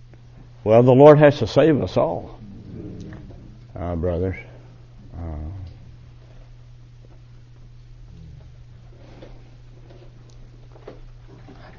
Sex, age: male, 60-79